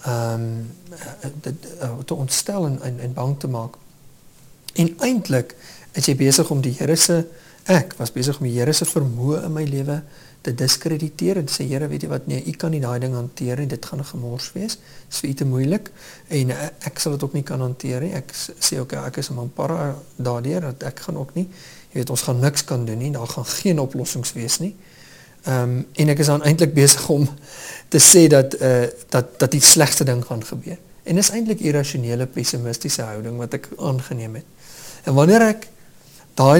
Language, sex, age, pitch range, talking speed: English, male, 50-69, 125-165 Hz, 190 wpm